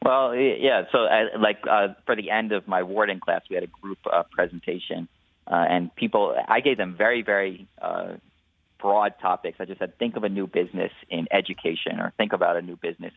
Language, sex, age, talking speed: English, male, 30-49, 210 wpm